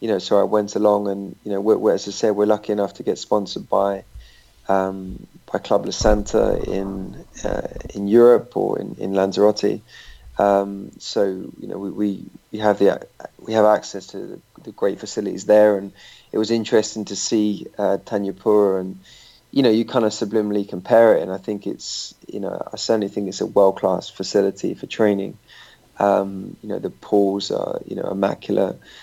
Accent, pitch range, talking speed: British, 95-105 Hz, 195 wpm